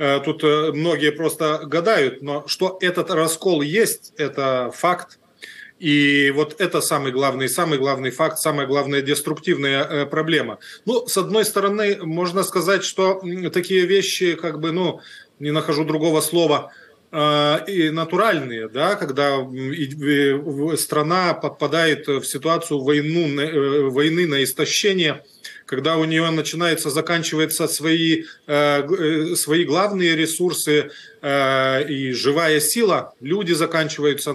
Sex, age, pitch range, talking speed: male, 20-39, 145-165 Hz, 115 wpm